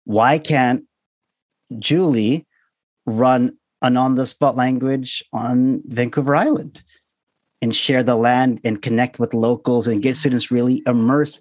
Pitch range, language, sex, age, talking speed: 105-135 Hz, English, male, 40-59, 120 wpm